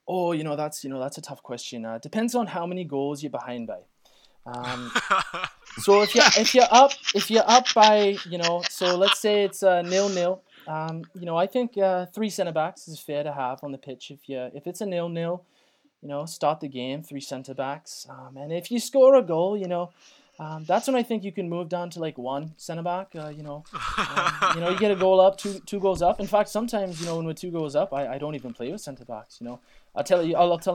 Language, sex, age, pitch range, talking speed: English, male, 20-39, 145-190 Hz, 250 wpm